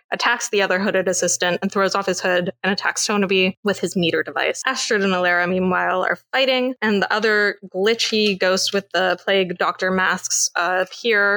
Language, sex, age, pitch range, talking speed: English, female, 20-39, 185-225 Hz, 180 wpm